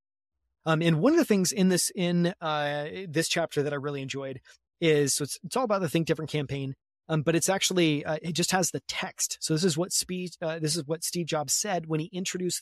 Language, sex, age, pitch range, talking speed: English, male, 30-49, 140-180 Hz, 225 wpm